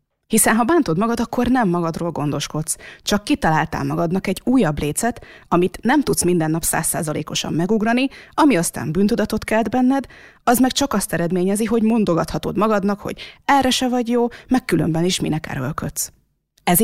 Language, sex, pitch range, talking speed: Hungarian, female, 165-235 Hz, 165 wpm